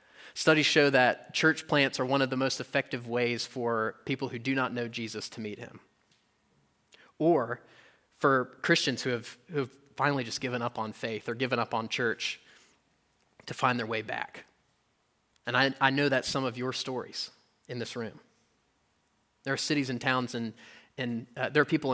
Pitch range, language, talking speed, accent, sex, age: 115-135 Hz, English, 185 wpm, American, male, 30-49